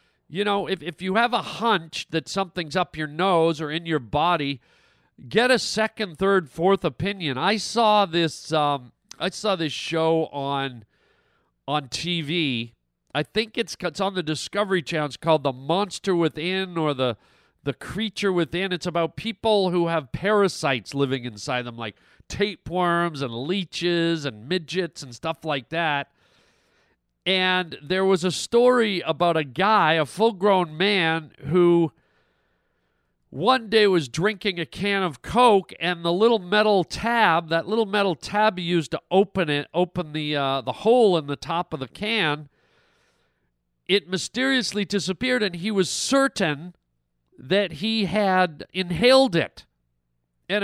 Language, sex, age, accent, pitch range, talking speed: English, male, 40-59, American, 150-200 Hz, 155 wpm